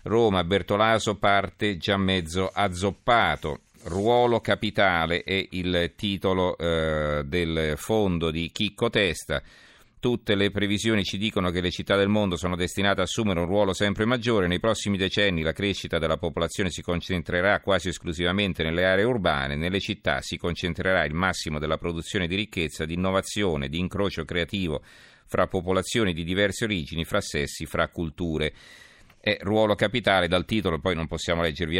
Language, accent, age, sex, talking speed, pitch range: Italian, native, 40-59, male, 155 wpm, 85-100 Hz